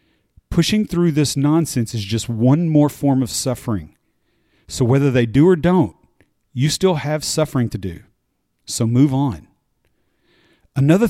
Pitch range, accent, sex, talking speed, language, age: 115-150 Hz, American, male, 145 wpm, English, 40-59